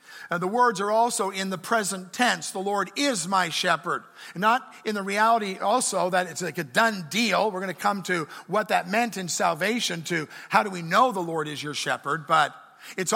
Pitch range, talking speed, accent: 180-235 Hz, 215 wpm, American